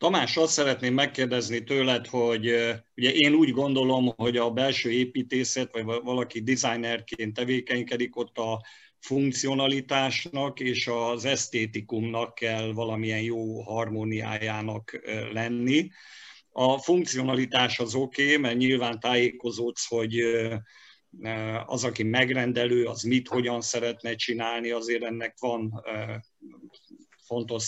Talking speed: 105 wpm